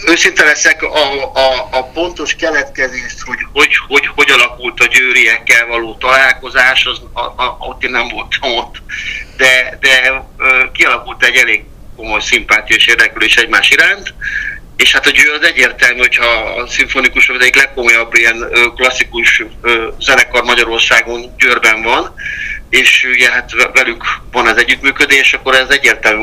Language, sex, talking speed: Hungarian, male, 140 wpm